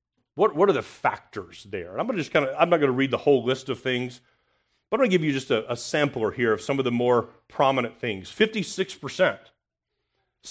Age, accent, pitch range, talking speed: 40-59, American, 110-135 Hz, 225 wpm